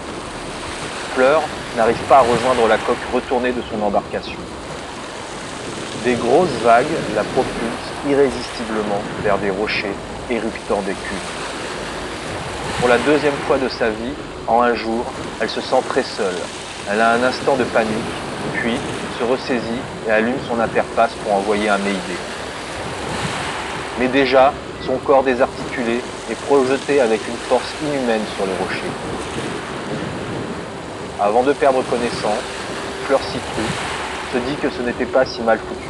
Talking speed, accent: 140 wpm, French